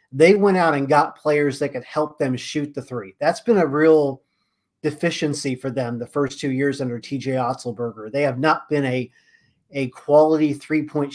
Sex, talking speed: male, 190 wpm